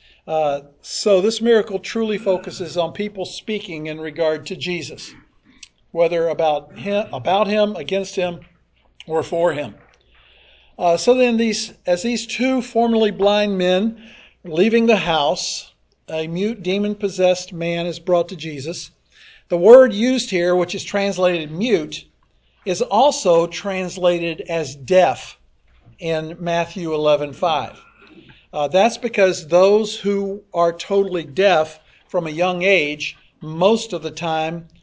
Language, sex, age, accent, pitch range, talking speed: English, male, 50-69, American, 160-195 Hz, 135 wpm